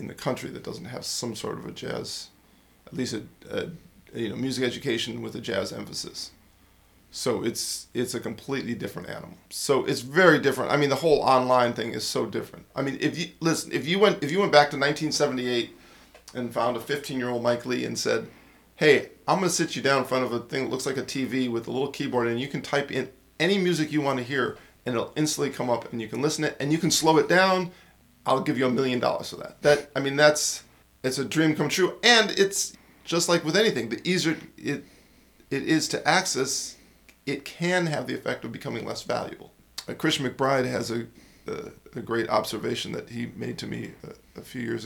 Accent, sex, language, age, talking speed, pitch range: American, male, English, 40-59, 230 wpm, 120-155 Hz